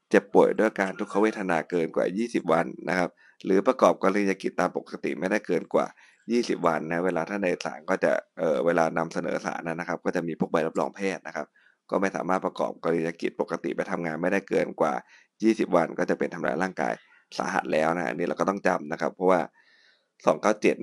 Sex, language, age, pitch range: male, Thai, 20-39, 85-100 Hz